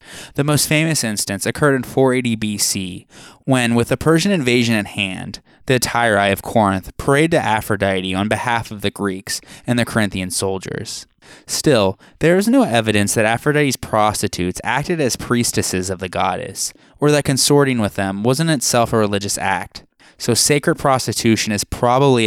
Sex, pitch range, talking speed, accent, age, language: male, 100-140 Hz, 160 wpm, American, 20-39, English